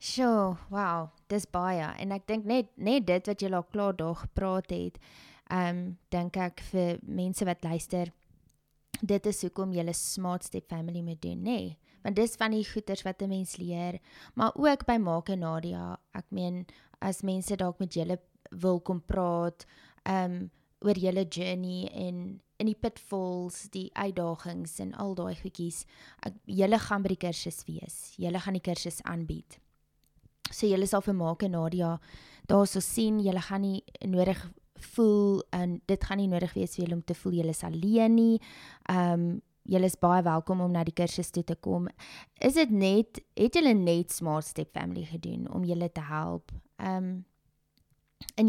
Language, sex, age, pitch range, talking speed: English, female, 20-39, 170-200 Hz, 170 wpm